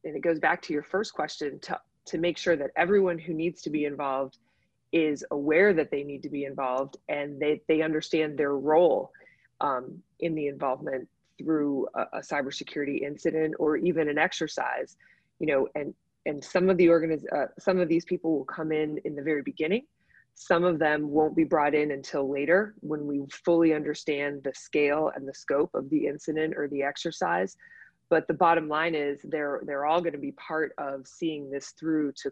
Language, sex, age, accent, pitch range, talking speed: English, female, 20-39, American, 145-165 Hz, 195 wpm